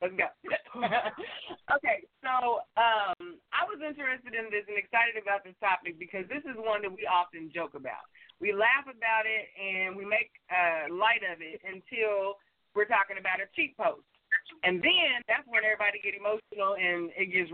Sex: female